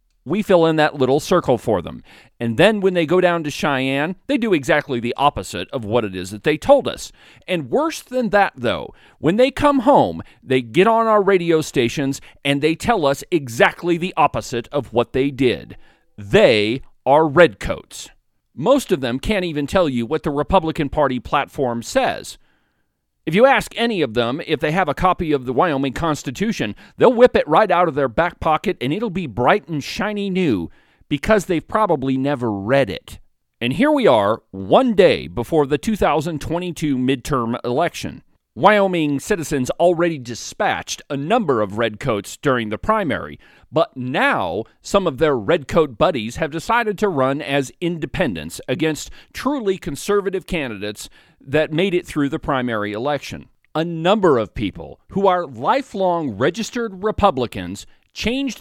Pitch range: 130-190 Hz